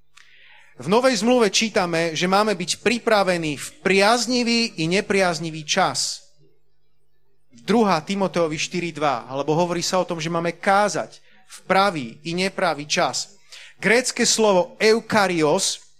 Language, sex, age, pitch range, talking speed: Slovak, male, 30-49, 175-230 Hz, 120 wpm